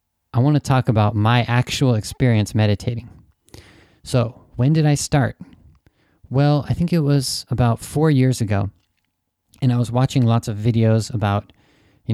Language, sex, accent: Japanese, male, American